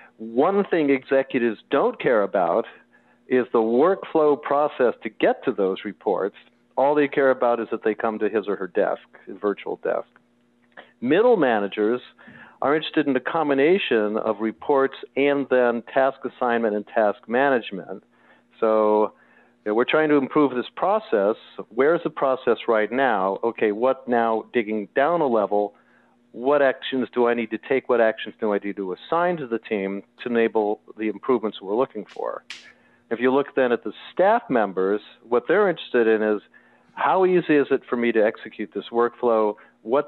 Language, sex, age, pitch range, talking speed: English, male, 50-69, 105-135 Hz, 170 wpm